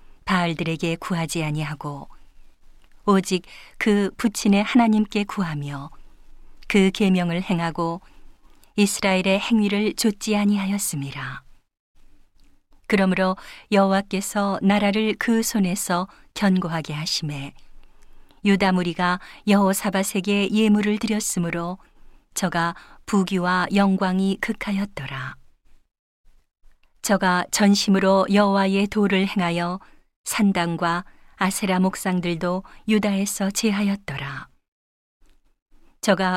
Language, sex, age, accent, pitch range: Korean, female, 40-59, native, 170-205 Hz